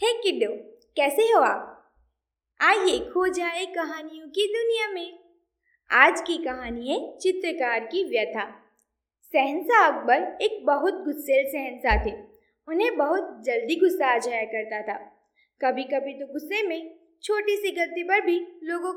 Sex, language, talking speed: female, Gujarati, 145 wpm